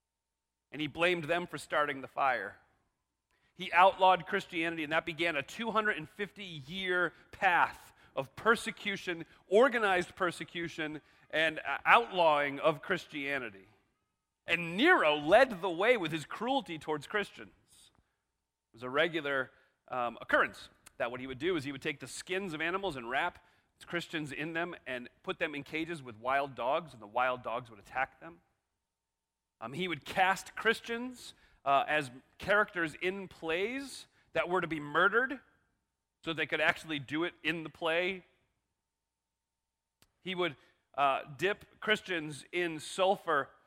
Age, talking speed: 40-59, 145 wpm